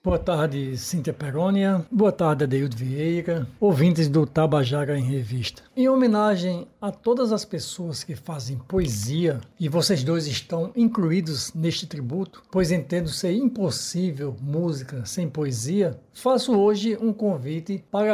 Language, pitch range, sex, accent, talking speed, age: Portuguese, 155-190 Hz, male, Brazilian, 135 wpm, 60-79